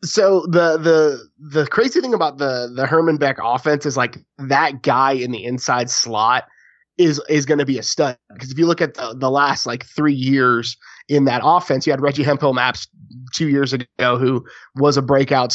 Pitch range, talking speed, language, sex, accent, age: 125-150 Hz, 205 wpm, English, male, American, 20-39